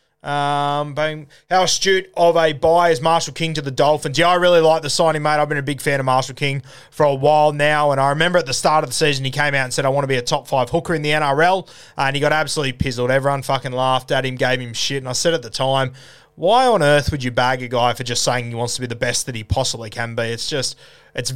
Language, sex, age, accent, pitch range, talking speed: English, male, 20-39, Australian, 130-160 Hz, 285 wpm